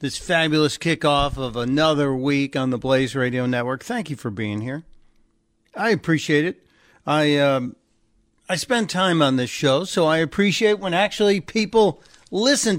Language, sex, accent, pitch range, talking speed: English, male, American, 135-170 Hz, 160 wpm